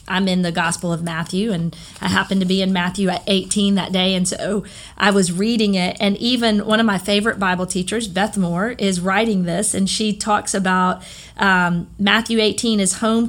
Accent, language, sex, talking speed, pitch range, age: American, English, female, 205 wpm, 185-225 Hz, 40-59